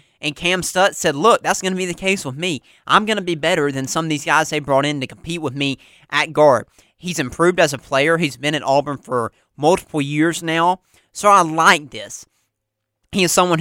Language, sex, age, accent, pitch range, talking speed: English, male, 30-49, American, 135-165 Hz, 230 wpm